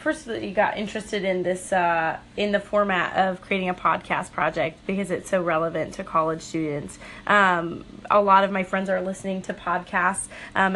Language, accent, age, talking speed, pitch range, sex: English, American, 20-39, 185 wpm, 180-205 Hz, female